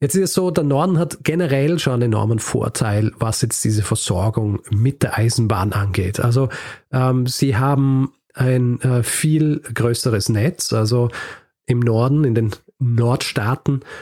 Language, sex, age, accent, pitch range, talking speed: German, male, 40-59, German, 115-140 Hz, 150 wpm